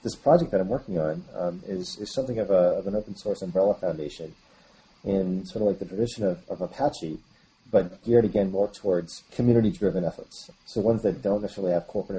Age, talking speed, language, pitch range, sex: 30-49, 200 wpm, English, 90-105 Hz, male